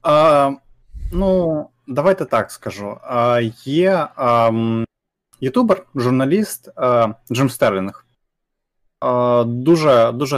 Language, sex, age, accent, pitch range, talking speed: Ukrainian, male, 20-39, native, 120-155 Hz, 85 wpm